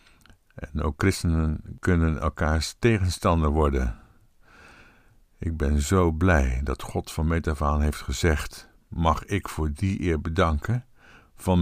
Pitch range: 80-100 Hz